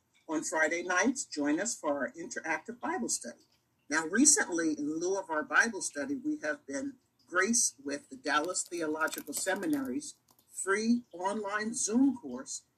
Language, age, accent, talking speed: English, 50-69, American, 145 wpm